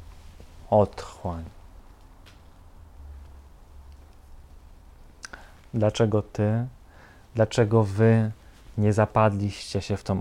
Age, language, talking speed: 30-49, Polish, 60 wpm